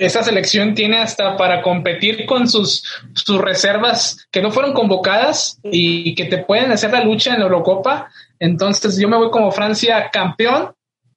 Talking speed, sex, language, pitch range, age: 165 wpm, male, Spanish, 180-215 Hz, 20-39